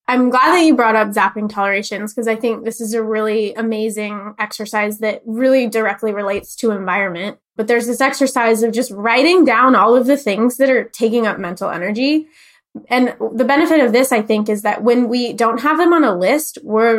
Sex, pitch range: female, 210-255 Hz